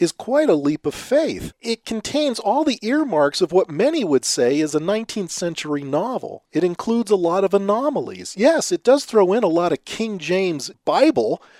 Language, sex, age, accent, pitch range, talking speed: English, male, 40-59, American, 155-260 Hz, 195 wpm